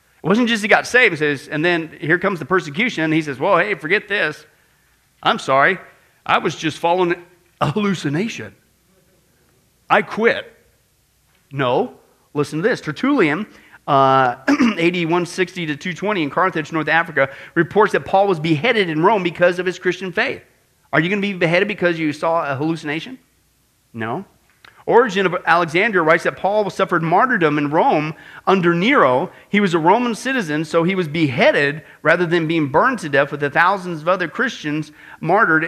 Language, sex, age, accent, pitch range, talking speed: English, male, 40-59, American, 155-210 Hz, 170 wpm